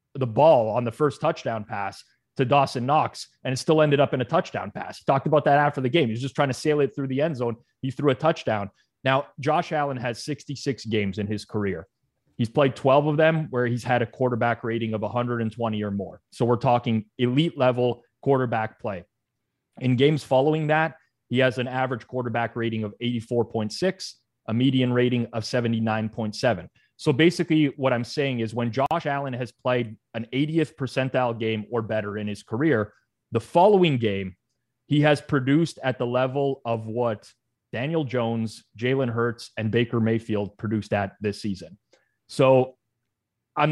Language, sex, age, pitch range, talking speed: English, male, 30-49, 115-145 Hz, 180 wpm